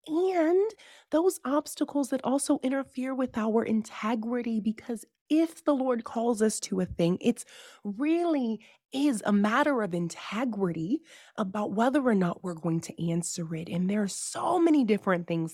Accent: American